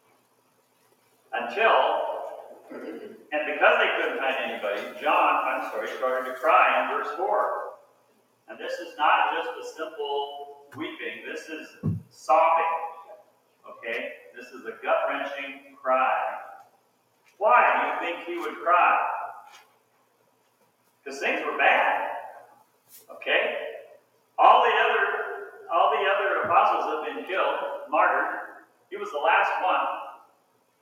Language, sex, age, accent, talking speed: English, male, 40-59, American, 120 wpm